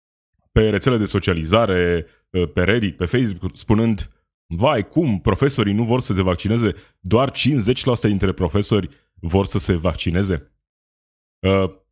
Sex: male